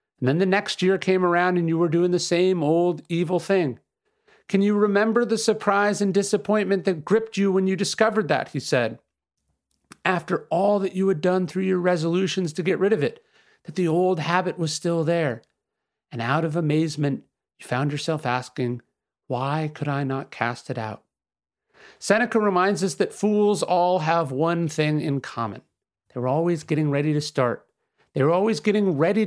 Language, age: English, 40-59